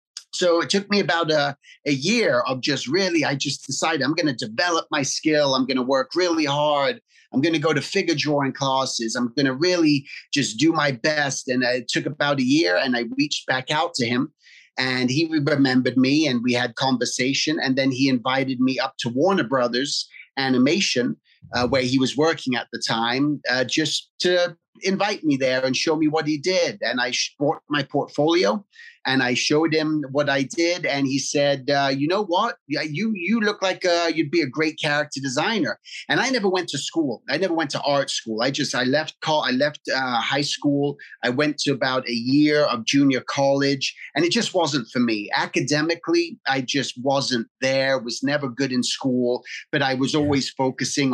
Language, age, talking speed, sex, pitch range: English, 30-49, 205 wpm, male, 130-160 Hz